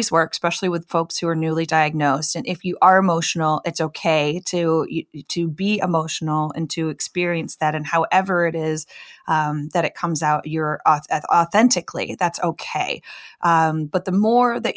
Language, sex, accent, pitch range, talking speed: English, female, American, 150-175 Hz, 170 wpm